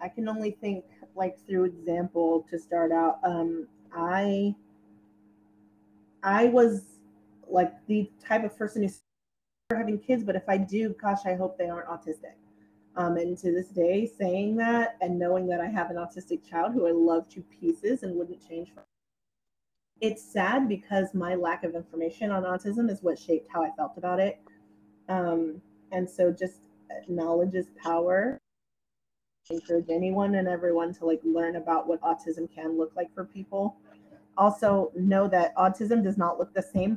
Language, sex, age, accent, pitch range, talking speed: English, female, 30-49, American, 165-195 Hz, 170 wpm